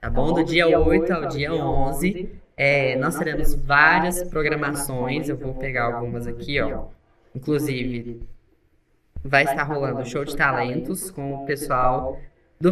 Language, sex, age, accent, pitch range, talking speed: Portuguese, female, 10-29, Brazilian, 135-165 Hz, 145 wpm